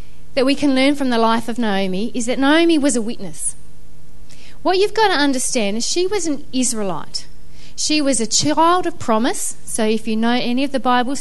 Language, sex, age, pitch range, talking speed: English, female, 30-49, 230-310 Hz, 210 wpm